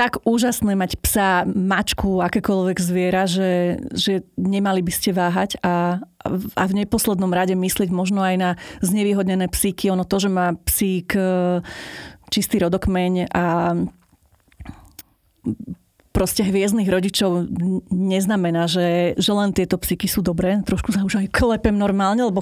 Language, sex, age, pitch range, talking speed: Slovak, female, 30-49, 180-195 Hz, 135 wpm